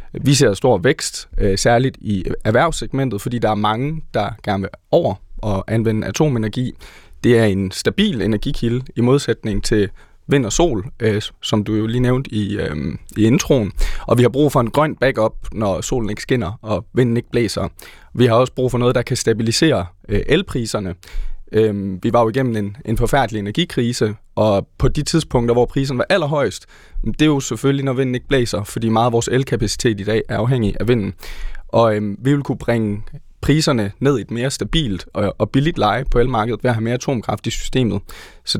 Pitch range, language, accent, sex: 105-130 Hz, Danish, native, male